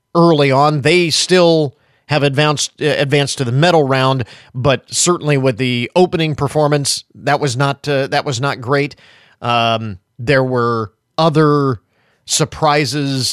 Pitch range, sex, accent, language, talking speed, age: 125-160 Hz, male, American, English, 140 wpm, 40-59